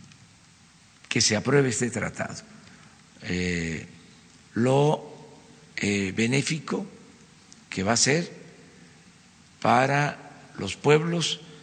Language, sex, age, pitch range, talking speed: Spanish, male, 50-69, 110-160 Hz, 85 wpm